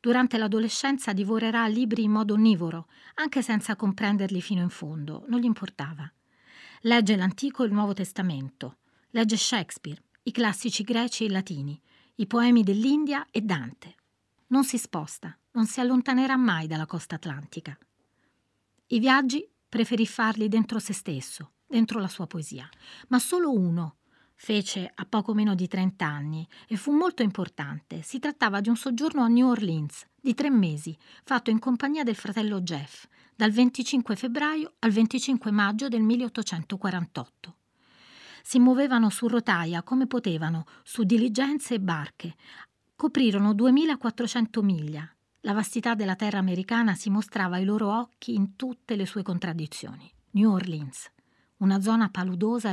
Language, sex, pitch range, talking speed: Italian, female, 180-240 Hz, 145 wpm